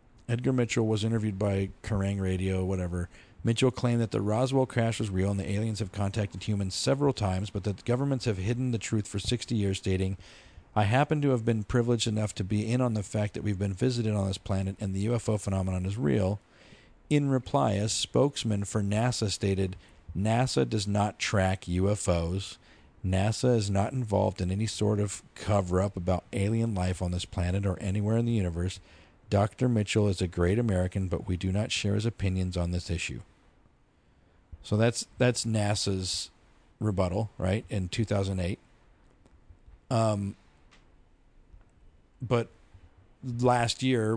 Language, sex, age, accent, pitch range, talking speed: English, male, 50-69, American, 95-115 Hz, 165 wpm